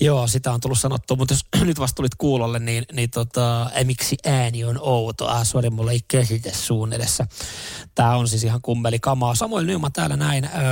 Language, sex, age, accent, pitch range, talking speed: Finnish, male, 20-39, native, 115-135 Hz, 190 wpm